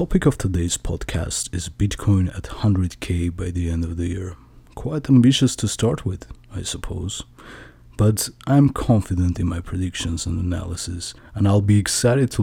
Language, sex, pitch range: English, male, 90-125 Hz